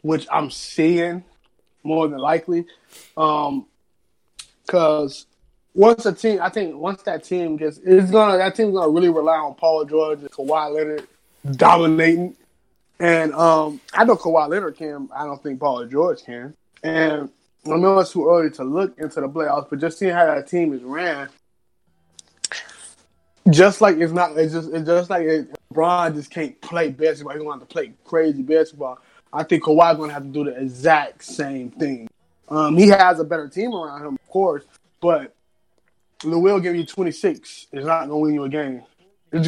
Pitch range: 150-185 Hz